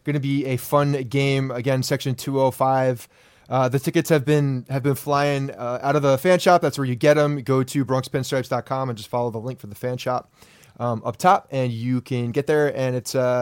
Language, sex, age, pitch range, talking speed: English, male, 20-39, 125-150 Hz, 235 wpm